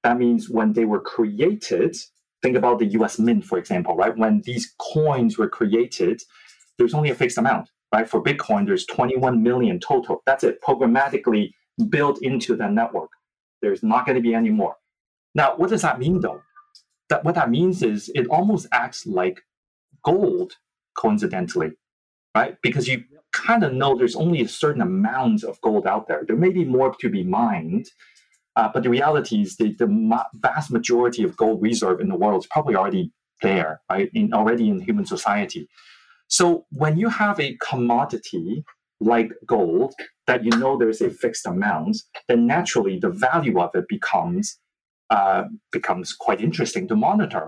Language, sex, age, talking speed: English, male, 30-49, 175 wpm